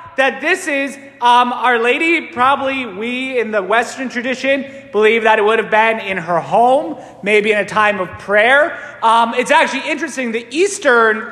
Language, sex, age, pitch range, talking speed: English, male, 30-49, 230-315 Hz, 175 wpm